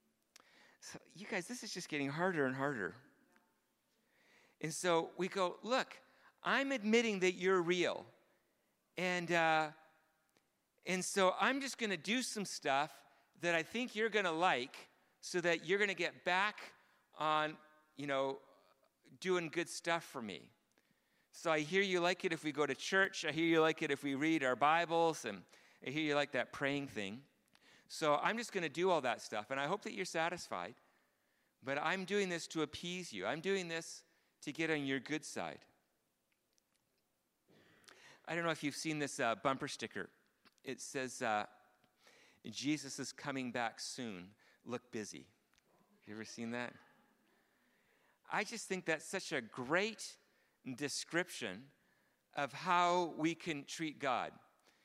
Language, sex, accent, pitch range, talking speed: English, male, American, 140-185 Hz, 165 wpm